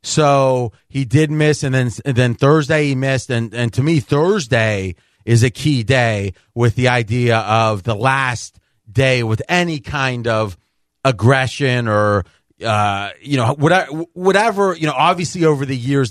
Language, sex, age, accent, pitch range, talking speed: English, male, 30-49, American, 115-150 Hz, 165 wpm